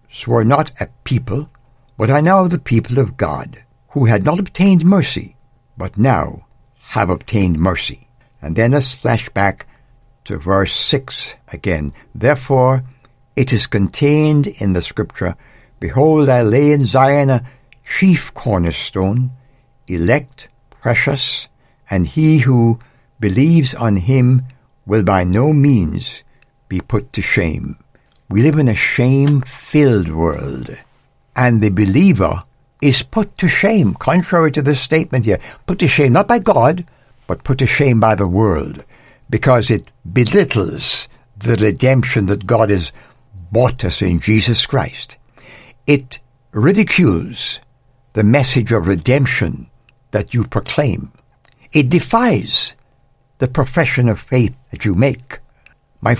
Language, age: English, 60-79